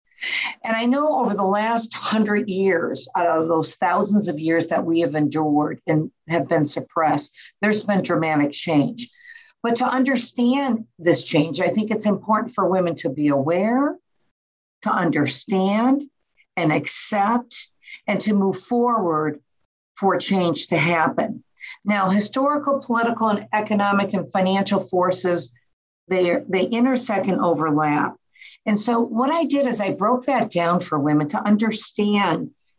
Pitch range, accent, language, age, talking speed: 170-225 Hz, American, English, 50-69, 145 wpm